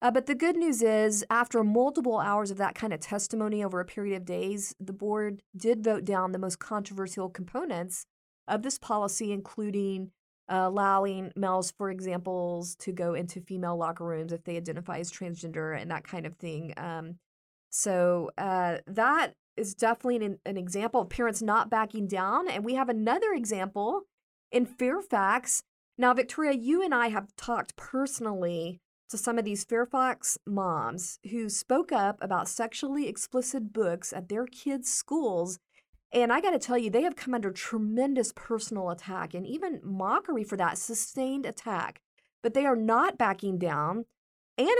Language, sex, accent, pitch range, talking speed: English, female, American, 185-245 Hz, 170 wpm